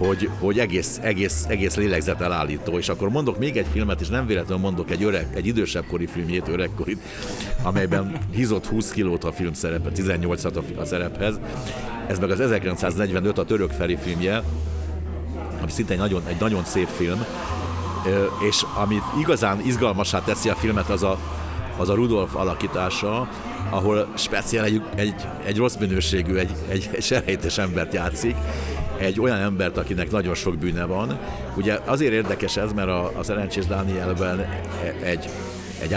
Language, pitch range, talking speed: Hungarian, 90-105 Hz, 150 wpm